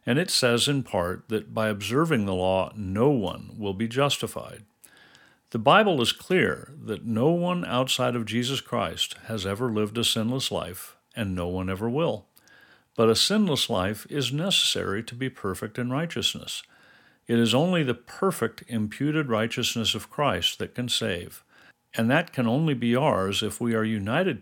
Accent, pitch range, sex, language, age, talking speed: American, 105-130 Hz, male, English, 50-69, 170 wpm